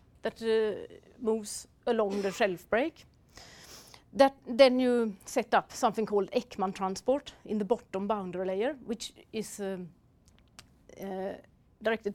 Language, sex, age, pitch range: English, female, 30-49, 195-240 Hz